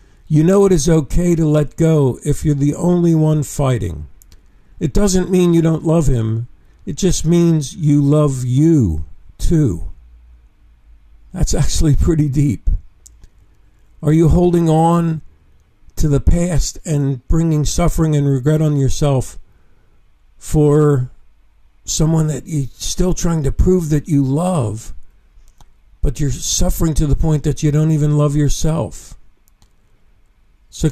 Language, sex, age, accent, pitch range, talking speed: English, male, 50-69, American, 100-165 Hz, 135 wpm